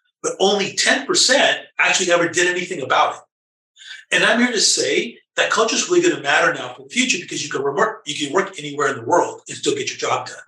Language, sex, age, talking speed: English, male, 30-49, 240 wpm